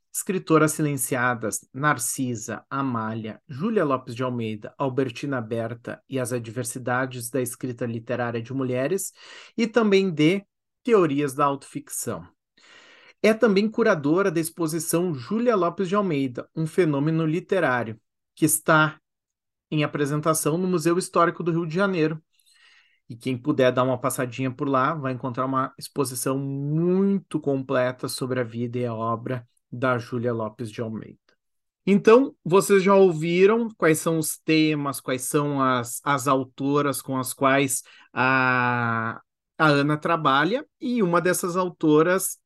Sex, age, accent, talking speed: male, 40-59, Brazilian, 135 wpm